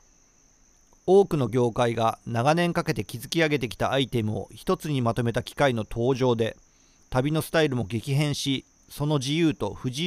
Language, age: Japanese, 40-59